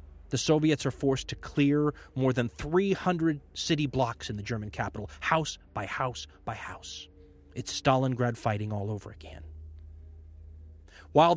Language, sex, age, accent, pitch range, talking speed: English, male, 30-49, American, 105-150 Hz, 140 wpm